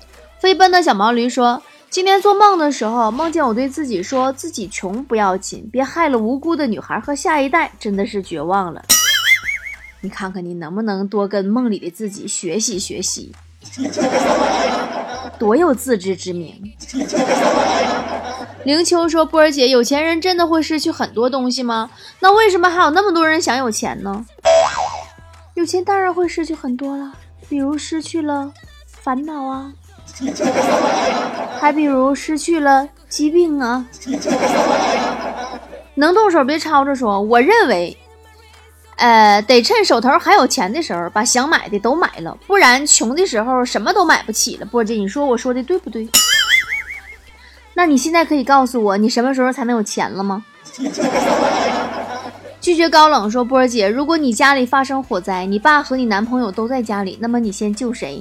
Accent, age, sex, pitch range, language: native, 20-39, female, 210-310 Hz, Chinese